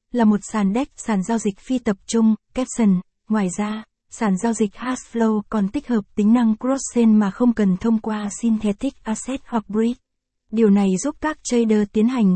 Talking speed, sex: 190 wpm, female